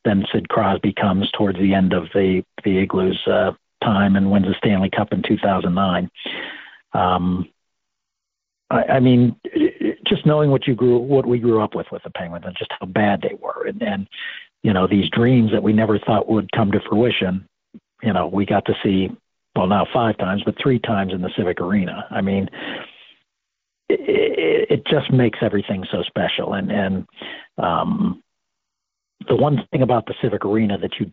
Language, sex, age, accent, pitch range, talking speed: English, male, 50-69, American, 95-115 Hz, 185 wpm